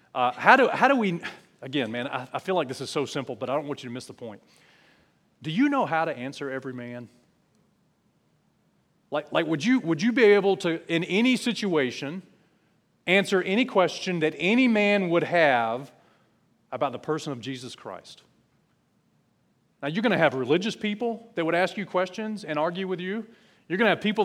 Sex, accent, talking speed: male, American, 200 wpm